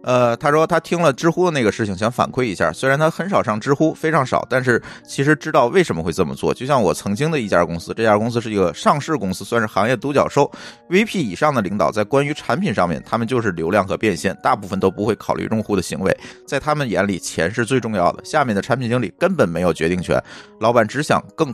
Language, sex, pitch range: Chinese, male, 100-150 Hz